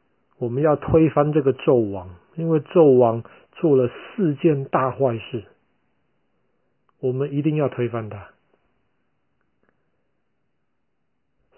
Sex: male